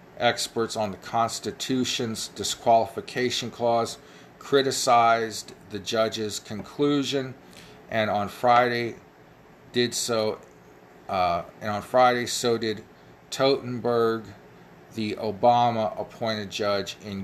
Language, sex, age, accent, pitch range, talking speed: English, male, 40-59, American, 95-120 Hz, 95 wpm